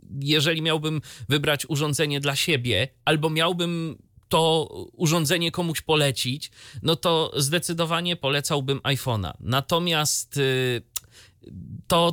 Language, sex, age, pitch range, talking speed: Polish, male, 30-49, 125-190 Hz, 95 wpm